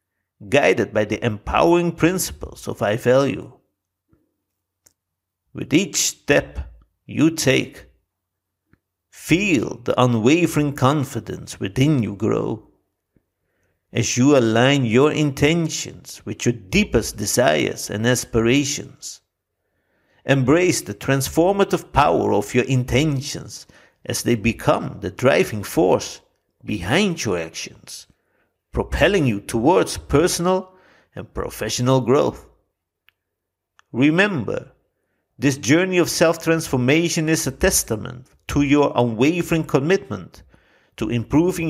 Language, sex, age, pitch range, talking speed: English, male, 50-69, 110-155 Hz, 95 wpm